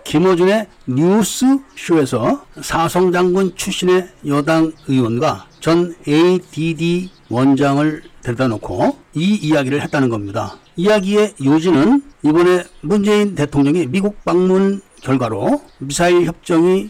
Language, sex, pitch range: Korean, male, 140-190 Hz